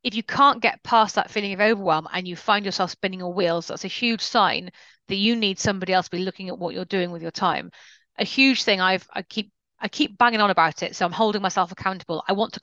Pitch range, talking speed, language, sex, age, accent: 180-235 Hz, 250 wpm, English, female, 30-49, British